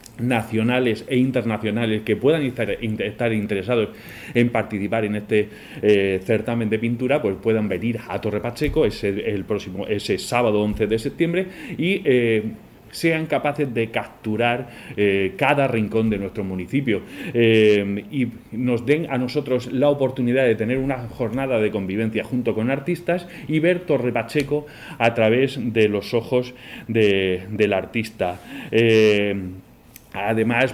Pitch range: 105-125 Hz